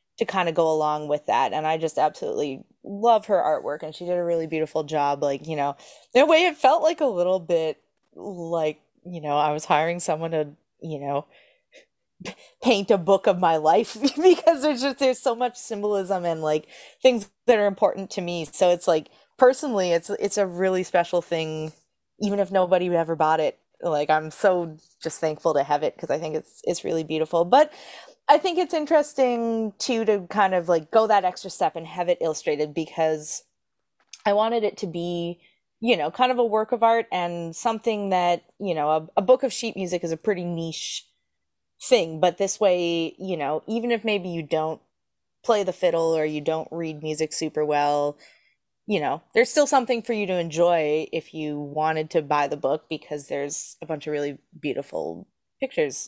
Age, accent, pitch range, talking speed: 20-39, American, 155-225 Hz, 200 wpm